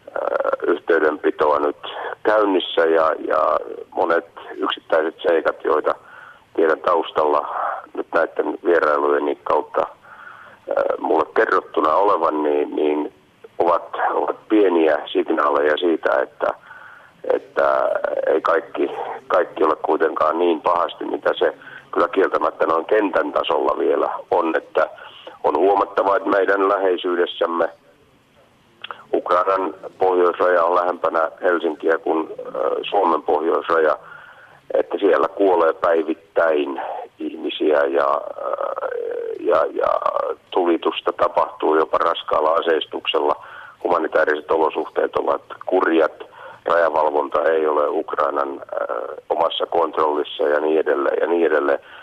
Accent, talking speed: native, 100 wpm